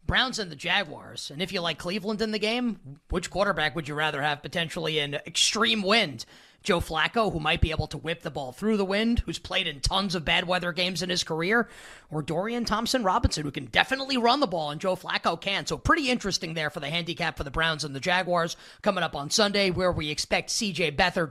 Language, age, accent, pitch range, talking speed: English, 30-49, American, 150-200 Hz, 230 wpm